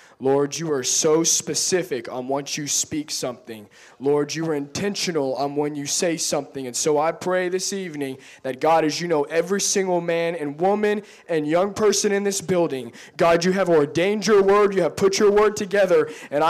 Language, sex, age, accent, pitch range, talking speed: English, male, 20-39, American, 145-185 Hz, 195 wpm